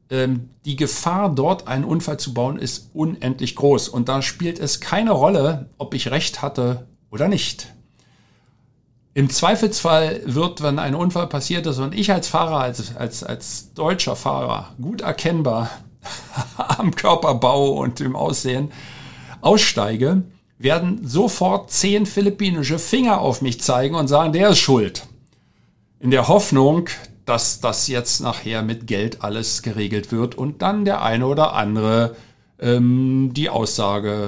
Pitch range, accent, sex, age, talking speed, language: 120-165 Hz, German, male, 50-69, 140 wpm, German